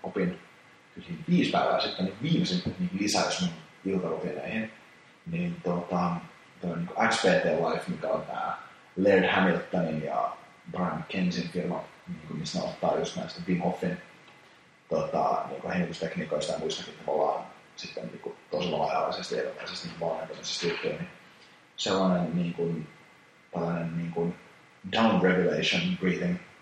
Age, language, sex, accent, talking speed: 30-49, Finnish, male, native, 125 wpm